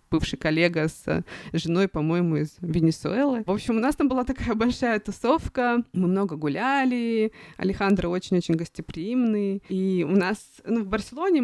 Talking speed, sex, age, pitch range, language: 145 wpm, female, 20-39, 175-220 Hz, Russian